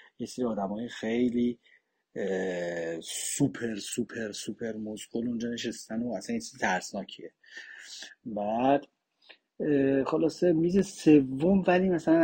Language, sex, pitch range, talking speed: Persian, male, 120-165 Hz, 100 wpm